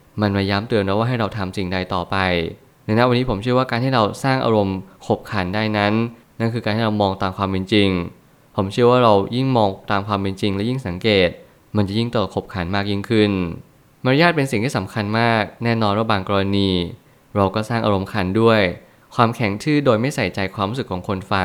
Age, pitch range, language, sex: 20-39, 100-115 Hz, Thai, male